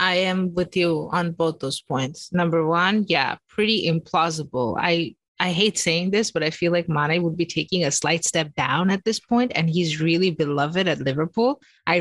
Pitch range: 165-195 Hz